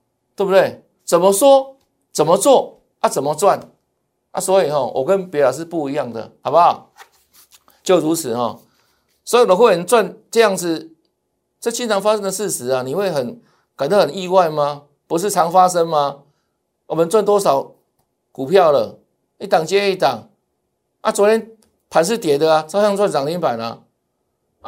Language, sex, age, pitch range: Chinese, male, 50-69, 170-230 Hz